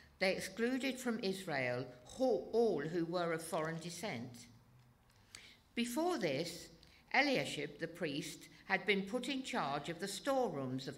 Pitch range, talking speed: 135-210 Hz, 130 wpm